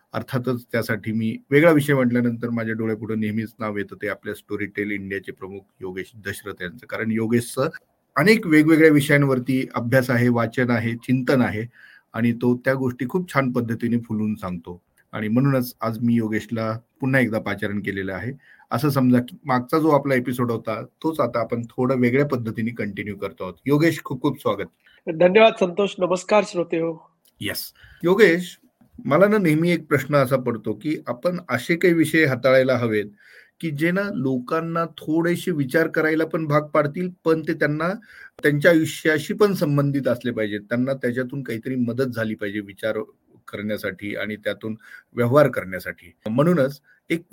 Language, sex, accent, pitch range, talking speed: Marathi, male, native, 115-160 Hz, 70 wpm